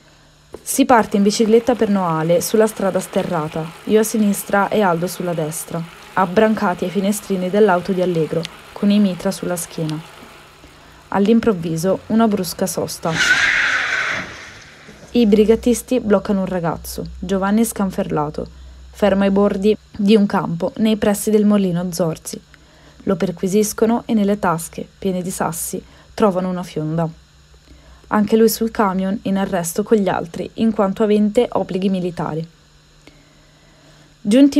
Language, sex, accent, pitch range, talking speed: Italian, female, native, 175-215 Hz, 130 wpm